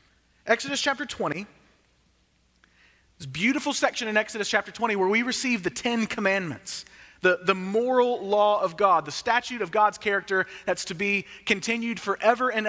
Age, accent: 30-49, American